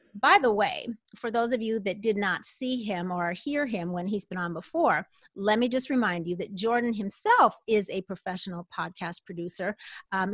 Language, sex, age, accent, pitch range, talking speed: English, female, 30-49, American, 190-250 Hz, 195 wpm